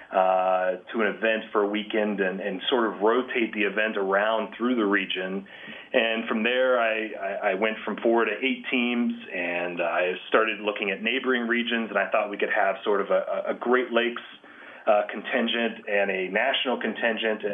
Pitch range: 105-120 Hz